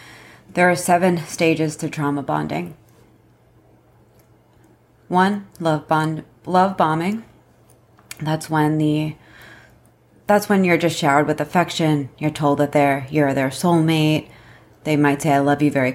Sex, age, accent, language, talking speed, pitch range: female, 30-49, American, English, 135 wpm, 145-160 Hz